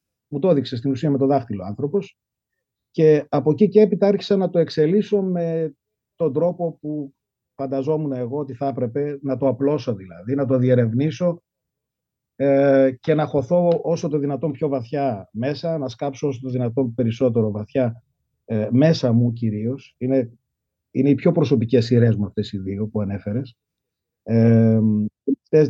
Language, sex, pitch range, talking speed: Greek, male, 120-150 Hz, 160 wpm